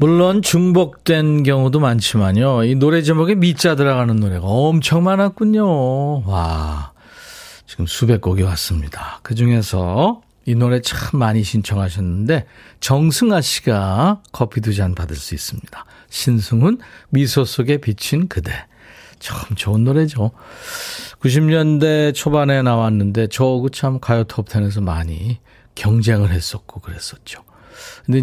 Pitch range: 105-150 Hz